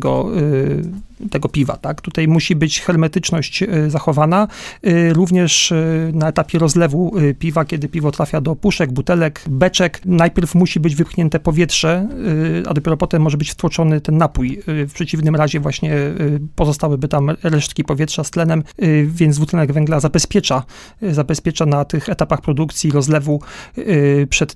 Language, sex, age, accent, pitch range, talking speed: Polish, male, 40-59, native, 150-175 Hz, 130 wpm